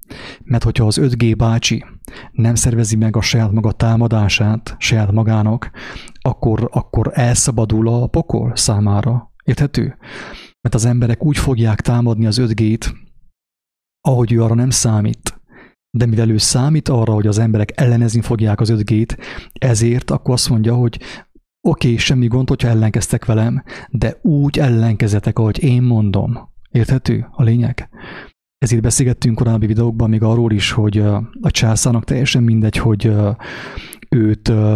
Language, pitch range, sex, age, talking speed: English, 110-125 Hz, male, 30-49, 140 wpm